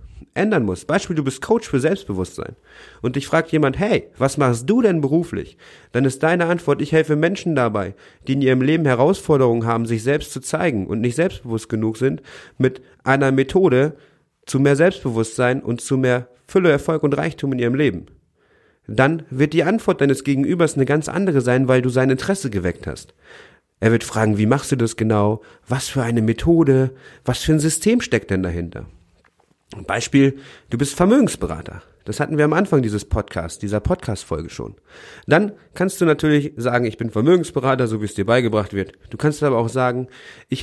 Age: 40-59